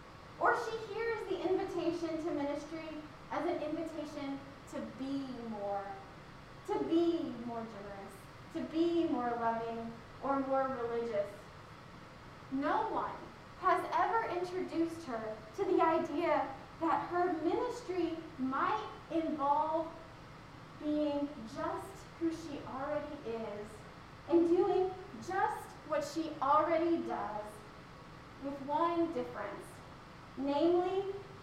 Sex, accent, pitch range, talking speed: female, American, 250-335 Hz, 105 wpm